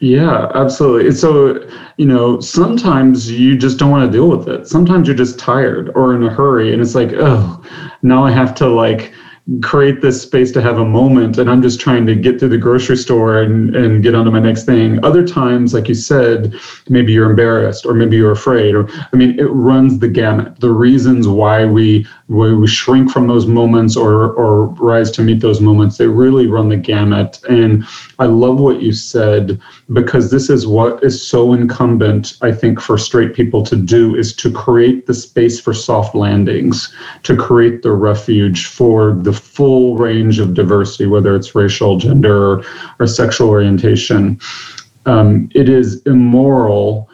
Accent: American